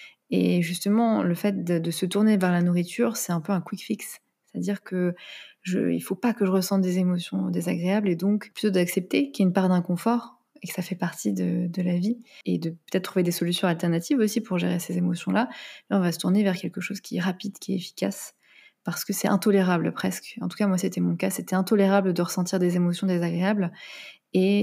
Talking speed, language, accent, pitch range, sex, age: 225 wpm, French, French, 180-210 Hz, female, 20-39